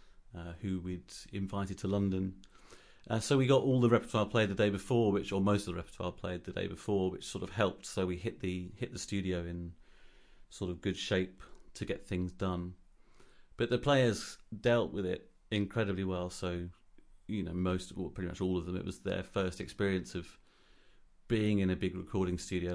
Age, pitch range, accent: 30-49, 90-105 Hz, British